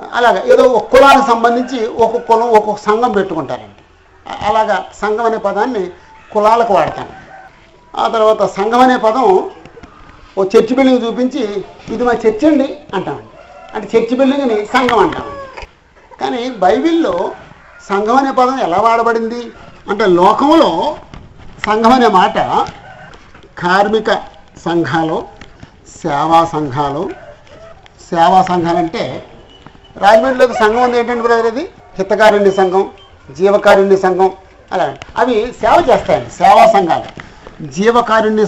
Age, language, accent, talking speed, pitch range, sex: 60-79, Telugu, native, 105 wpm, 195-250 Hz, male